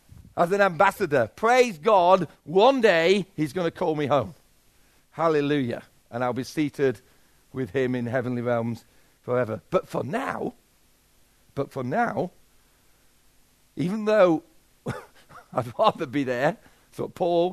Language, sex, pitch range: English, male, 135-195 Hz